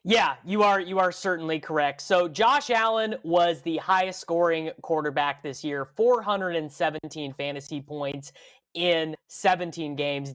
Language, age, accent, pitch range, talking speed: English, 20-39, American, 145-190 Hz, 135 wpm